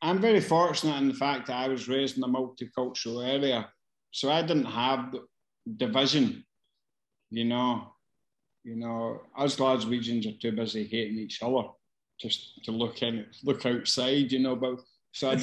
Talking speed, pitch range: 165 wpm, 130-165 Hz